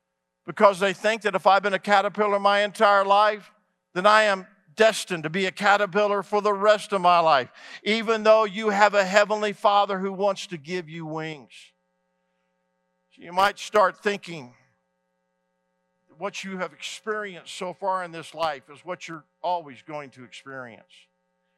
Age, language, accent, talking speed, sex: 50-69, English, American, 165 wpm, male